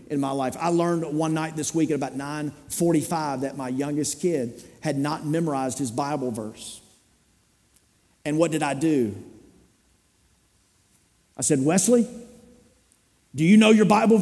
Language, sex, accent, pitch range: English, male, American, 150-225 Hz